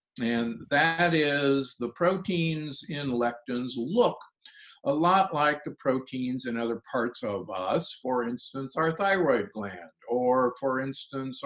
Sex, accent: male, American